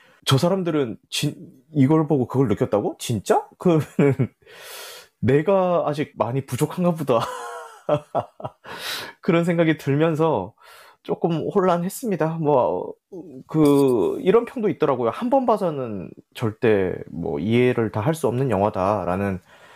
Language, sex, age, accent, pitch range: Korean, male, 20-39, native, 105-165 Hz